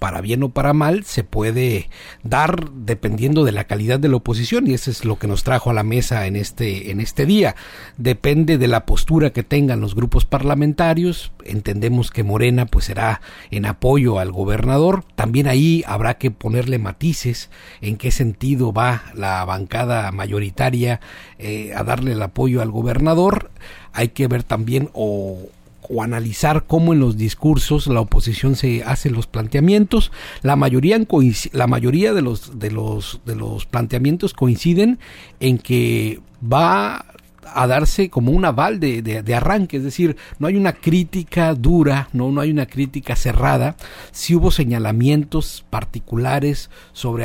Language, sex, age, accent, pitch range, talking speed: Spanish, male, 50-69, Mexican, 110-145 Hz, 165 wpm